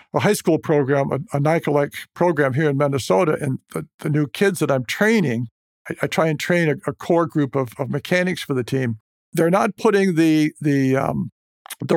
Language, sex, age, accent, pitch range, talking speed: English, male, 60-79, American, 145-185 Hz, 205 wpm